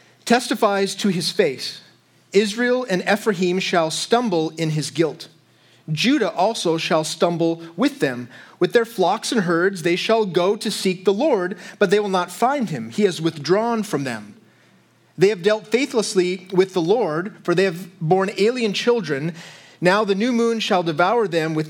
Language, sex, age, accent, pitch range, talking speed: English, male, 30-49, American, 175-230 Hz, 170 wpm